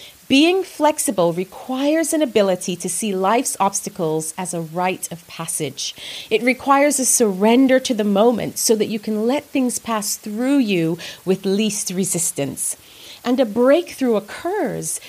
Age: 30-49